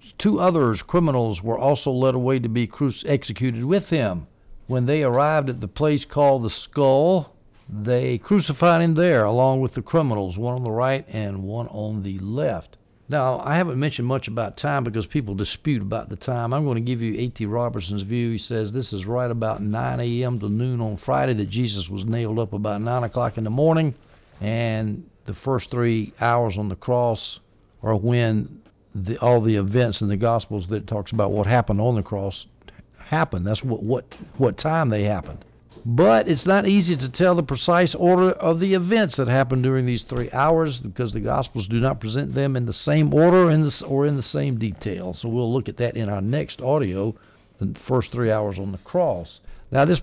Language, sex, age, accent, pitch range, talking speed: English, male, 60-79, American, 105-140 Hz, 205 wpm